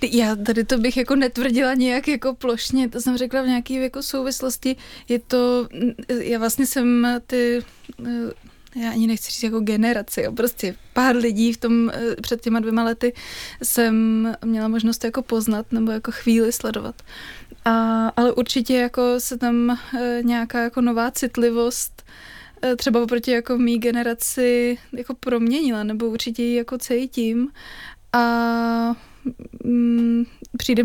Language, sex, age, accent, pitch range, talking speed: Czech, female, 20-39, native, 225-245 Hz, 140 wpm